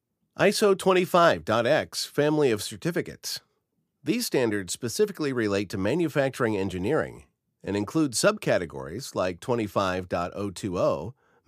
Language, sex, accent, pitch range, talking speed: English, male, American, 100-160 Hz, 90 wpm